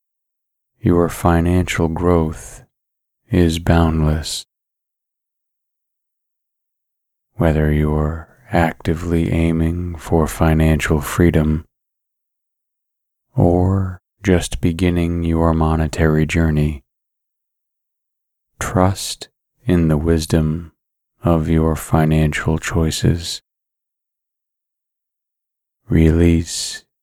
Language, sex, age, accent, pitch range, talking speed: English, male, 30-49, American, 80-85 Hz, 60 wpm